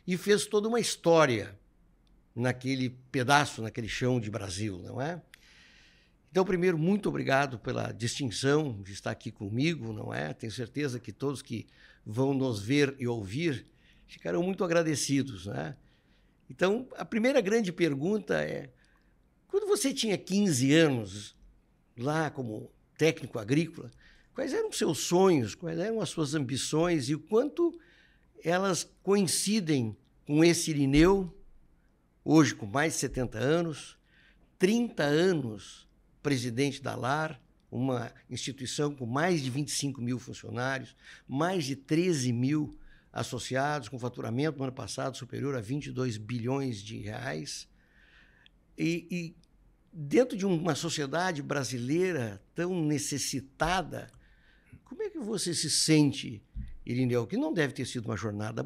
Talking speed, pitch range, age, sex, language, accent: 135 wpm, 125-170 Hz, 60-79, male, Portuguese, Brazilian